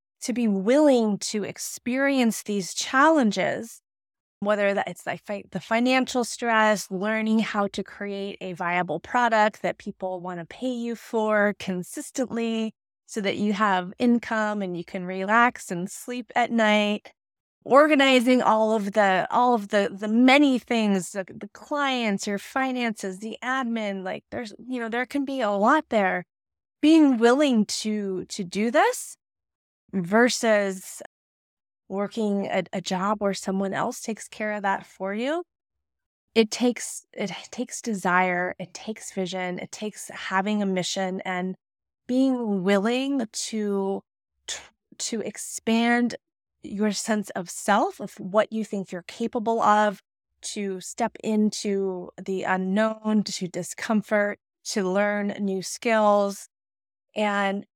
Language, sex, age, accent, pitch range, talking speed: English, female, 20-39, American, 195-235 Hz, 135 wpm